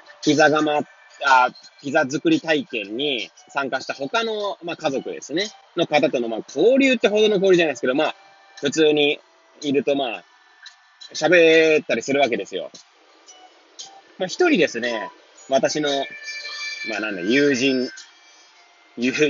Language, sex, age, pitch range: Japanese, male, 20-39, 130-215 Hz